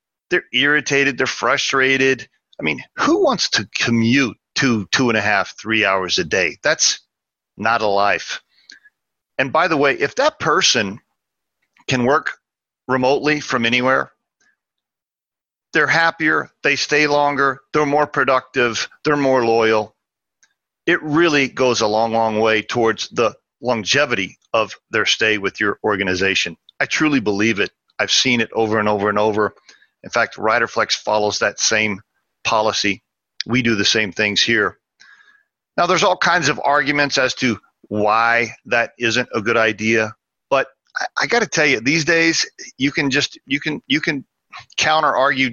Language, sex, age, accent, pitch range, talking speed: English, male, 40-59, American, 110-145 Hz, 155 wpm